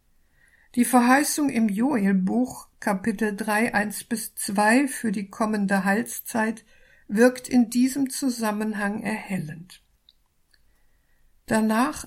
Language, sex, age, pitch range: German, female, 60-79, 205-245 Hz